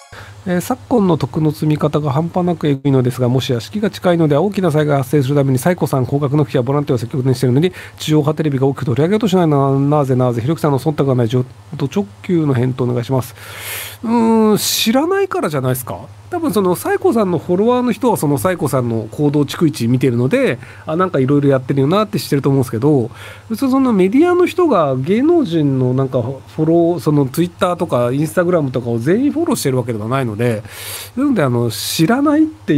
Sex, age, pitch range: male, 40-59, 125-185 Hz